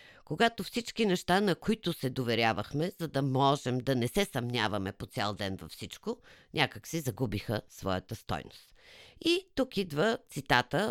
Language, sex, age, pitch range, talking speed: Bulgarian, female, 50-69, 115-170 Hz, 155 wpm